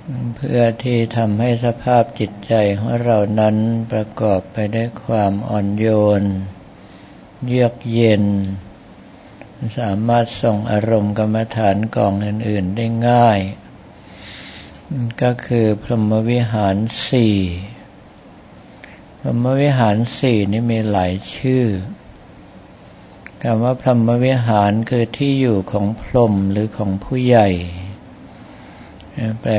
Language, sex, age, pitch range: Thai, male, 60-79, 100-120 Hz